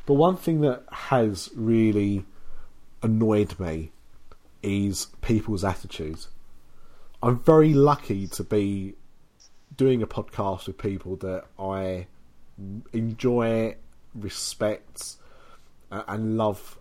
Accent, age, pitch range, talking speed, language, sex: British, 30-49, 95-130 Hz, 95 wpm, English, male